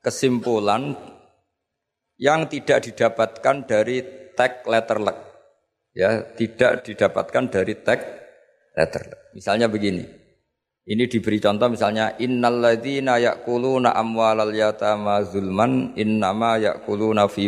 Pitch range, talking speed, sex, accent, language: 105-130 Hz, 85 wpm, male, native, Indonesian